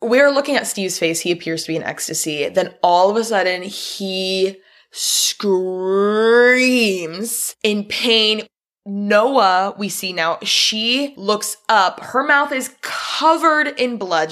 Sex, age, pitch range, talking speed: female, 20-39, 190-255 Hz, 140 wpm